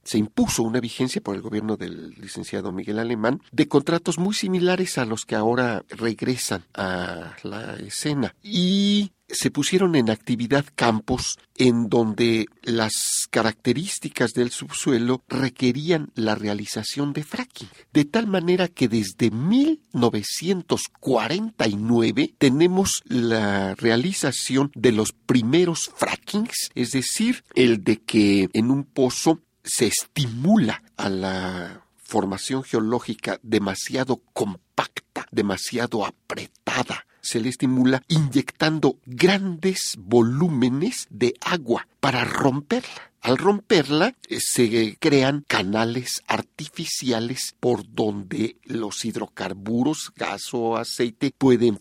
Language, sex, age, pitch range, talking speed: Spanish, male, 50-69, 115-155 Hz, 110 wpm